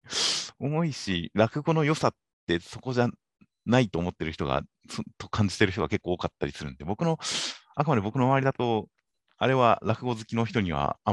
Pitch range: 75-115 Hz